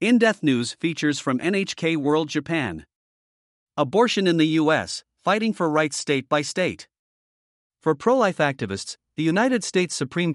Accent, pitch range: American, 130-170 Hz